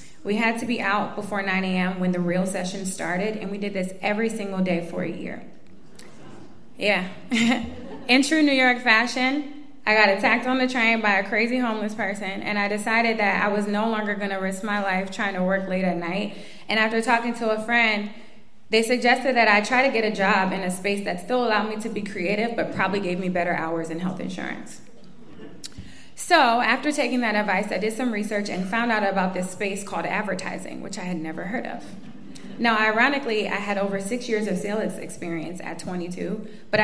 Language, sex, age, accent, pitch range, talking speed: English, female, 20-39, American, 185-225 Hz, 210 wpm